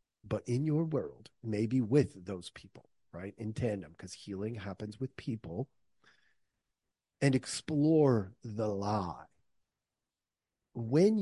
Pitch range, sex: 100-130 Hz, male